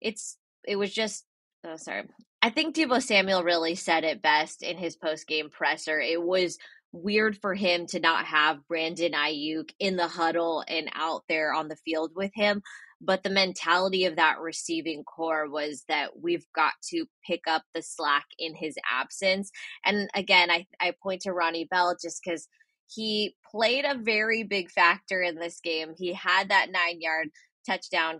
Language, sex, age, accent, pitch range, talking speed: English, female, 20-39, American, 165-195 Hz, 180 wpm